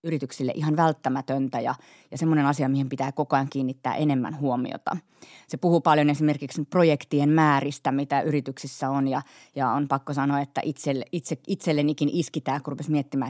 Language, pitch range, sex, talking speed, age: Finnish, 135-160 Hz, female, 160 wpm, 30-49